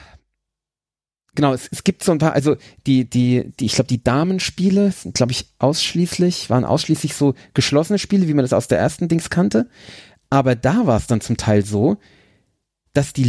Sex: male